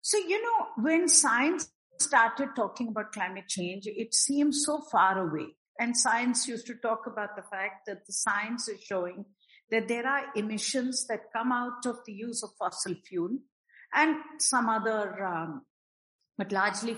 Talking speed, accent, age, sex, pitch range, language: 165 wpm, Indian, 50-69, female, 225-320 Hz, English